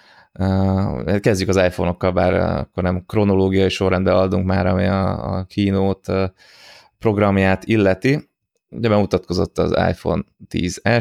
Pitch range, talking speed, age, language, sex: 90-95 Hz, 115 wpm, 20-39, Hungarian, male